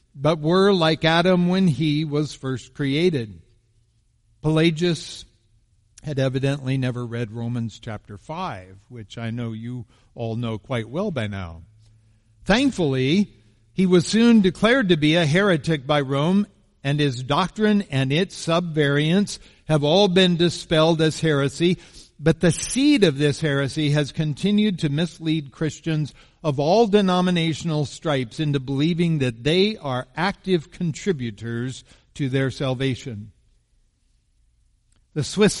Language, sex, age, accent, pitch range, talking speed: English, male, 60-79, American, 115-165 Hz, 130 wpm